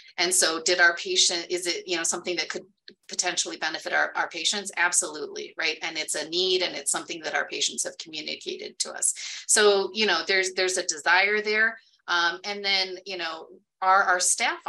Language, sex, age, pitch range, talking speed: English, female, 30-49, 175-225 Hz, 205 wpm